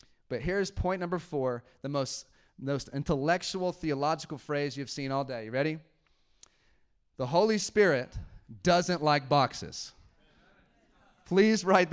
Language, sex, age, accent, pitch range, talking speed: English, male, 30-49, American, 140-170 Hz, 125 wpm